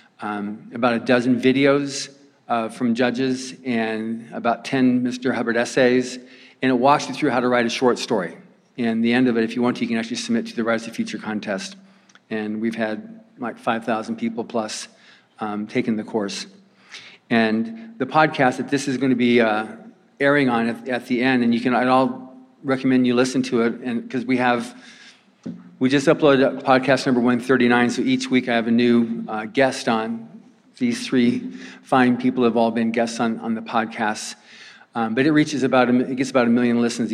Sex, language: male, English